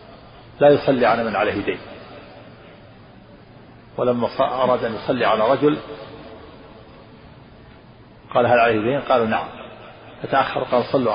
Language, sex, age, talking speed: Arabic, male, 50-69, 115 wpm